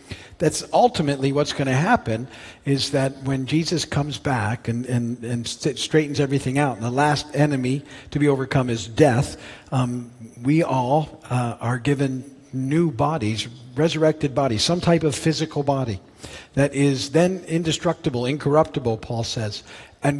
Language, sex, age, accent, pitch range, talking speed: English, male, 50-69, American, 125-155 Hz, 150 wpm